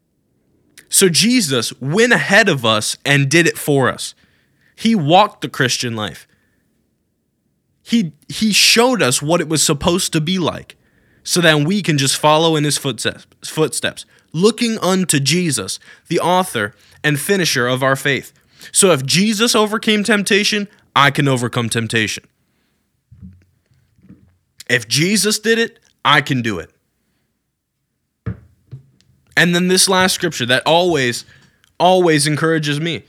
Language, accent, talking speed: English, American, 135 wpm